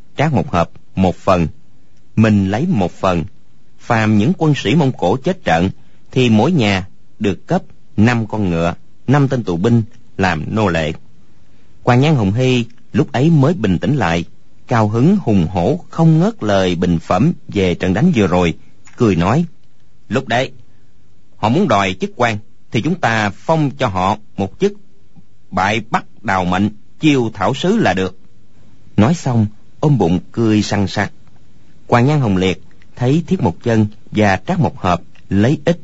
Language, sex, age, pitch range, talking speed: Vietnamese, male, 30-49, 100-140 Hz, 170 wpm